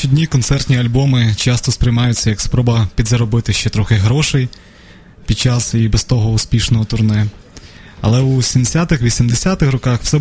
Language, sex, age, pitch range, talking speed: Ukrainian, male, 20-39, 105-125 Hz, 145 wpm